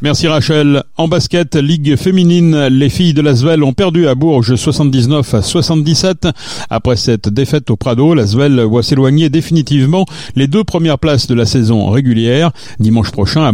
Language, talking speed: French, 165 wpm